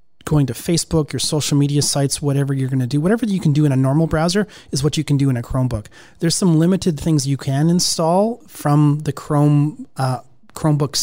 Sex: male